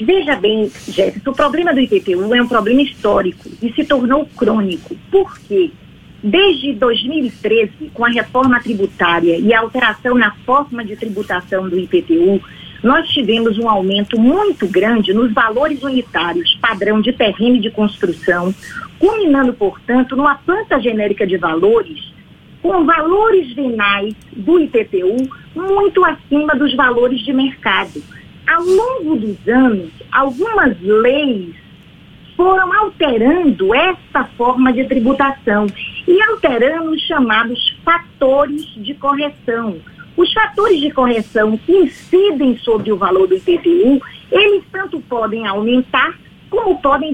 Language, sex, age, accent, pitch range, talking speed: Portuguese, female, 40-59, Brazilian, 220-330 Hz, 125 wpm